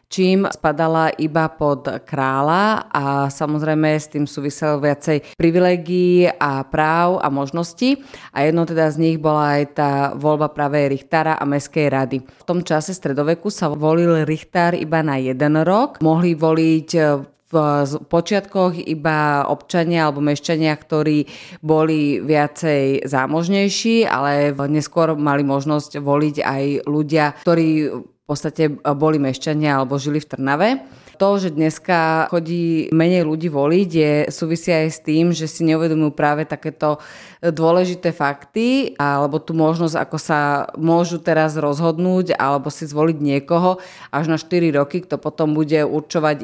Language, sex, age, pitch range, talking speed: Slovak, female, 30-49, 145-165 Hz, 140 wpm